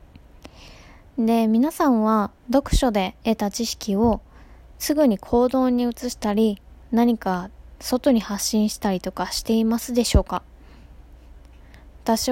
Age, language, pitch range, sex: 20-39, Japanese, 200-260 Hz, female